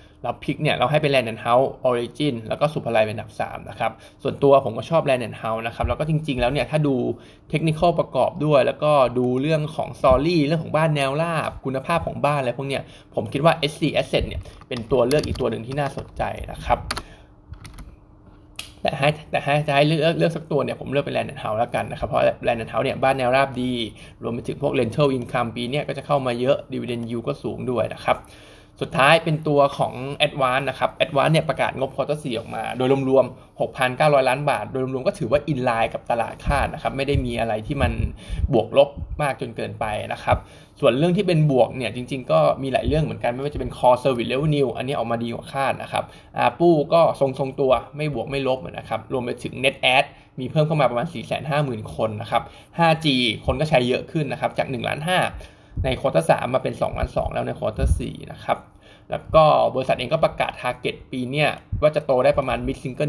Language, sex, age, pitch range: Thai, male, 20-39, 120-150 Hz